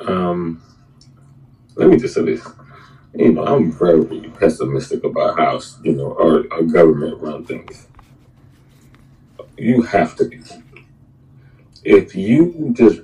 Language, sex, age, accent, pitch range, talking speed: English, male, 30-49, American, 85-130 Hz, 125 wpm